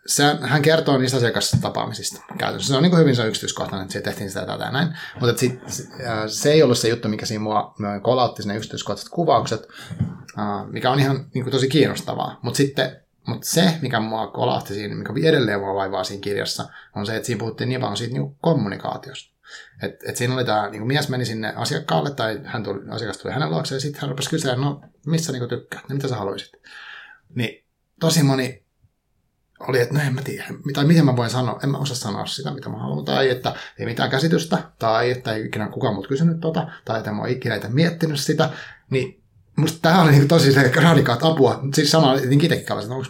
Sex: male